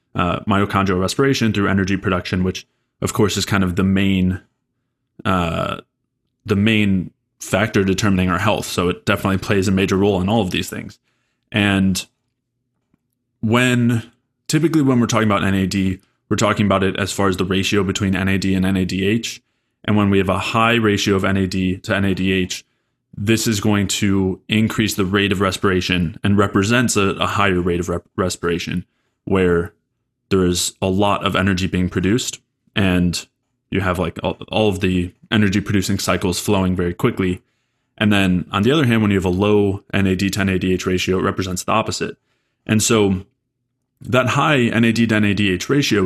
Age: 20-39